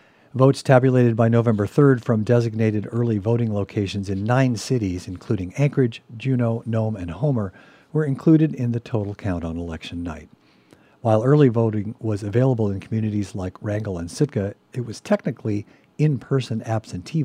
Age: 50-69